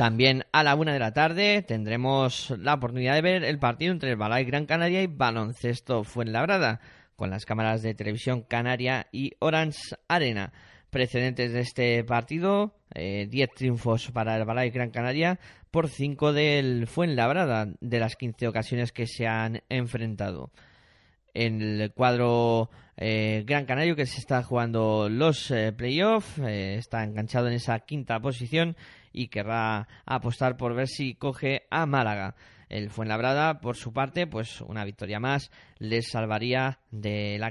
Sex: male